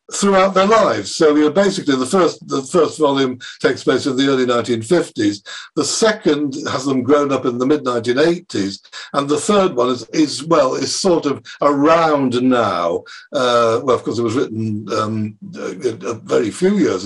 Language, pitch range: English, 120-165 Hz